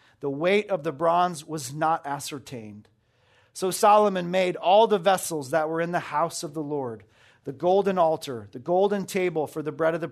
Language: English